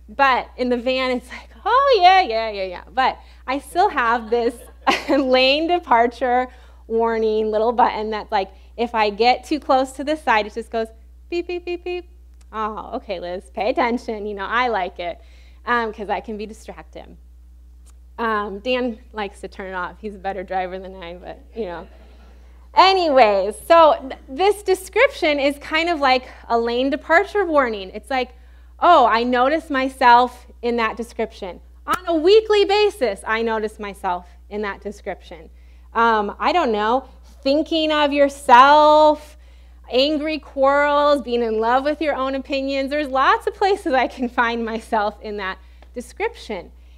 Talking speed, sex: 160 wpm, female